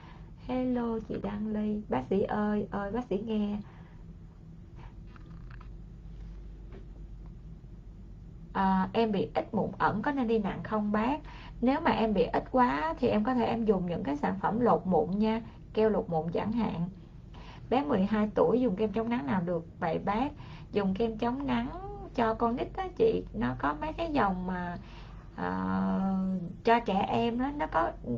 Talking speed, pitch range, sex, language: 170 wpm, 190-235 Hz, female, Vietnamese